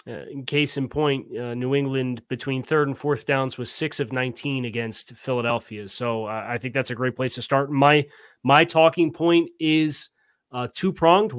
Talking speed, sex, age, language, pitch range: 190 wpm, male, 30-49, English, 125-150 Hz